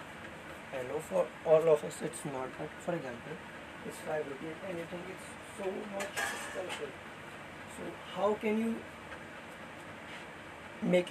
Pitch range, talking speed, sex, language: 160-195 Hz, 125 wpm, male, Hindi